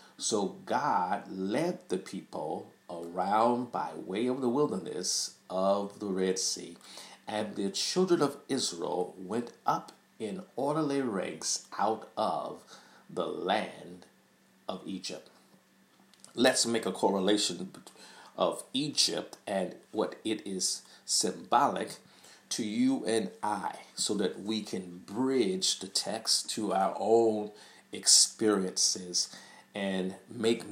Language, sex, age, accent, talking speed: English, male, 50-69, American, 115 wpm